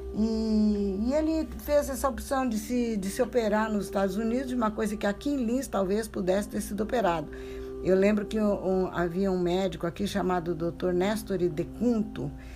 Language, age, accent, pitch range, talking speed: Portuguese, 60-79, Brazilian, 170-215 Hz, 190 wpm